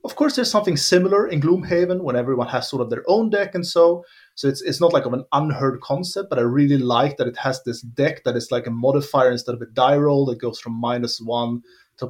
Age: 30-49